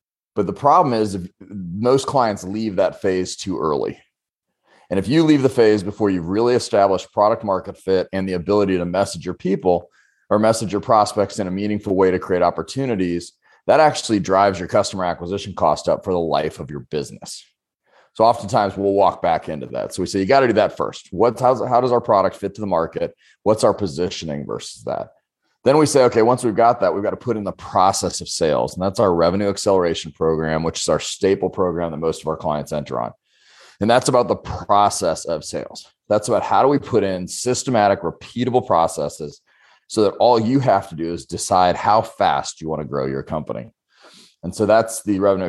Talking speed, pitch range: 210 wpm, 90-115 Hz